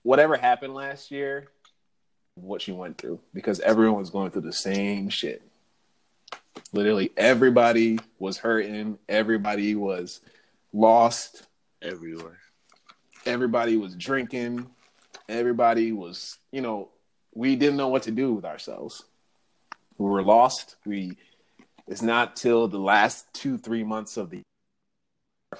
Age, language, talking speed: 20-39, English, 125 wpm